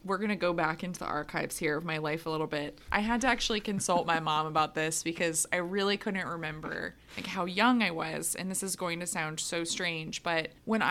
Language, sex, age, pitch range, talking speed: English, female, 20-39, 165-200 Hz, 240 wpm